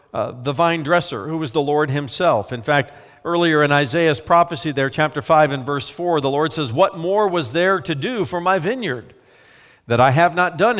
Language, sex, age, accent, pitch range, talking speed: English, male, 50-69, American, 150-195 Hz, 210 wpm